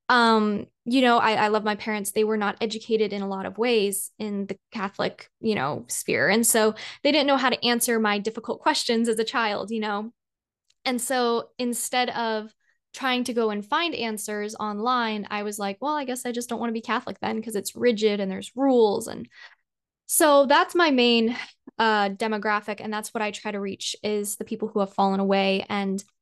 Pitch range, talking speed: 210-245 Hz, 210 wpm